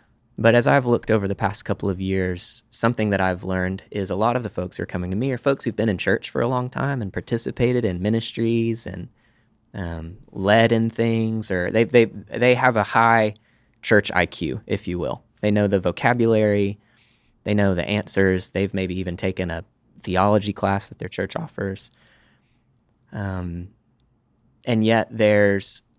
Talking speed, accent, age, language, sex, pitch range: 180 wpm, American, 20-39, English, male, 100-120 Hz